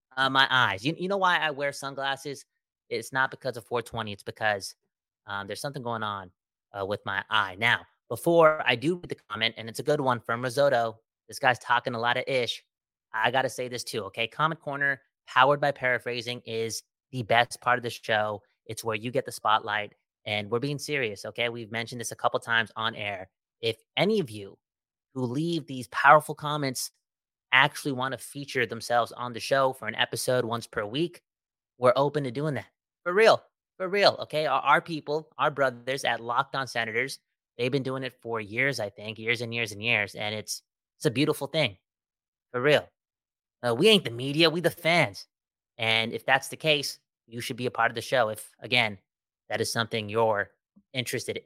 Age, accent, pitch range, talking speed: 30-49, American, 115-140 Hz, 205 wpm